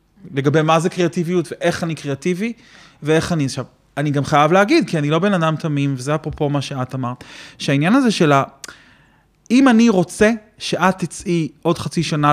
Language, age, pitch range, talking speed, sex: Hebrew, 30-49, 135-170 Hz, 175 wpm, male